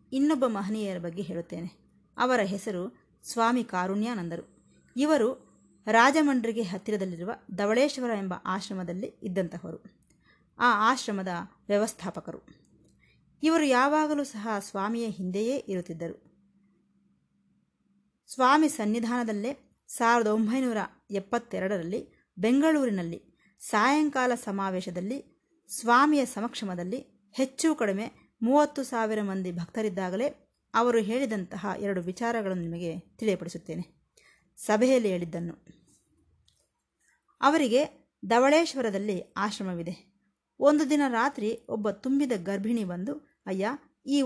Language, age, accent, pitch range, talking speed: Kannada, 20-39, native, 190-255 Hz, 80 wpm